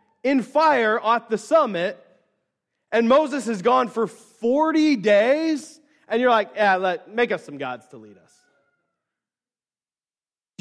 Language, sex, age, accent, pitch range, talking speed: English, male, 30-49, American, 185-275 Hz, 140 wpm